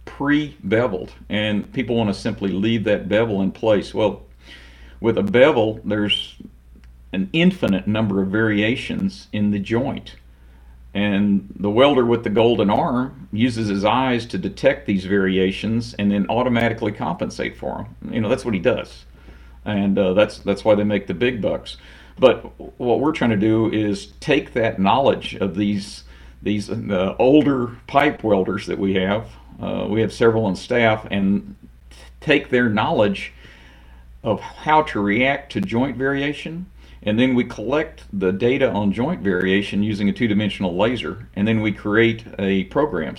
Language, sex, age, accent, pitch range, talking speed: English, male, 50-69, American, 95-115 Hz, 165 wpm